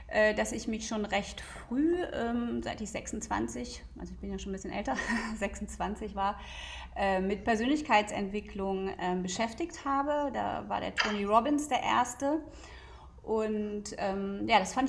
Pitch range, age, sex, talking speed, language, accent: 195-245 Hz, 30-49, female, 135 wpm, German, German